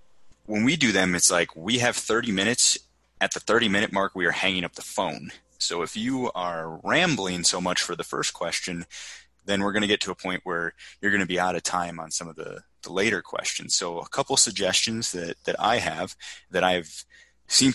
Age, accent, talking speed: 20-39, American, 225 wpm